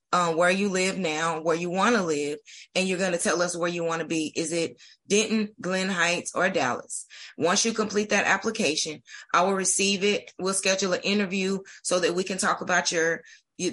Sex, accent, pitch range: female, American, 170-205 Hz